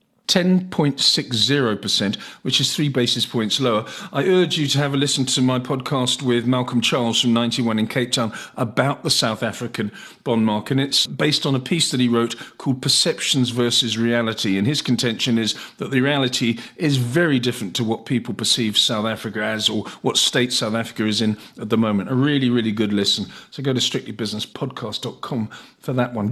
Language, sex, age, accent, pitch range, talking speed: English, male, 50-69, British, 115-145 Hz, 185 wpm